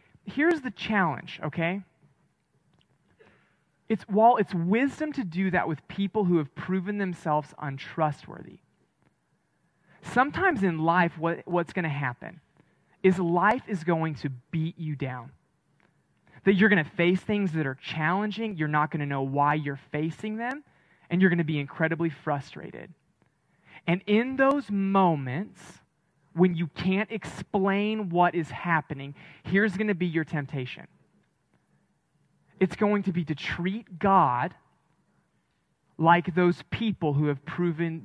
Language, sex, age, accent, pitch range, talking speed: English, male, 20-39, American, 155-200 Hz, 140 wpm